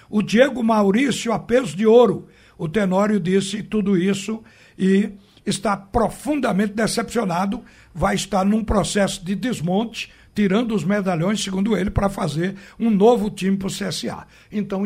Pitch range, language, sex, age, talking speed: 180-220 Hz, Portuguese, male, 60-79, 145 wpm